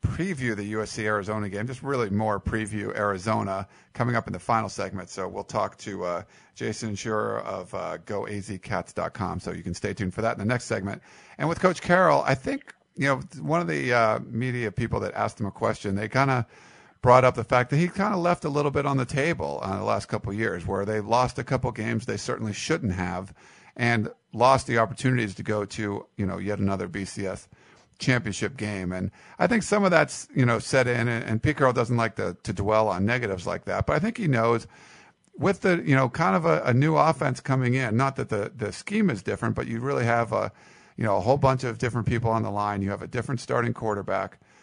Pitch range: 105-130 Hz